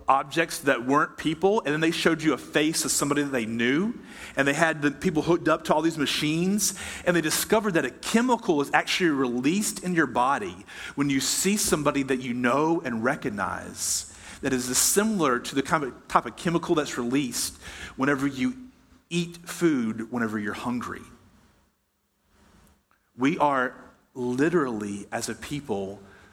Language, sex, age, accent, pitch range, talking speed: English, male, 40-59, American, 125-175 Hz, 165 wpm